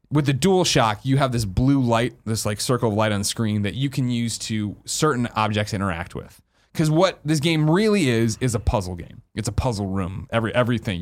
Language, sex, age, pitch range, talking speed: English, male, 20-39, 100-130 Hz, 230 wpm